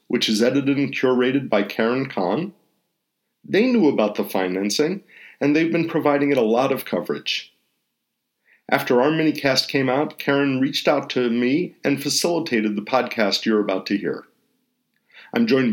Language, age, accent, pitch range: English, 50-69, American, 110-150 Hz